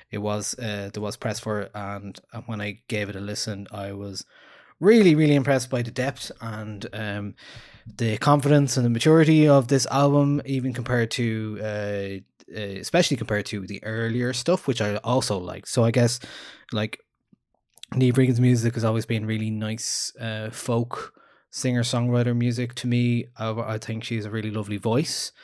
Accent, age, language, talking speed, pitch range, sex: Irish, 20-39, English, 170 wpm, 105-130 Hz, male